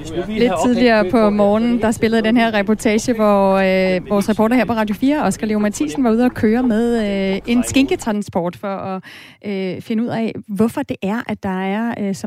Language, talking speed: Danish, 195 wpm